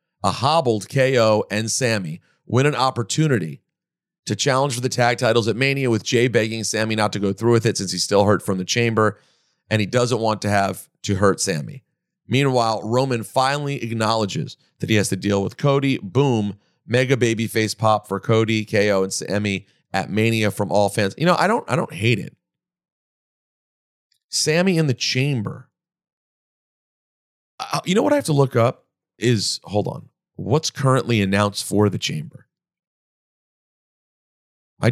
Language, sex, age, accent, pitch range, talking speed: English, male, 40-59, American, 105-130 Hz, 170 wpm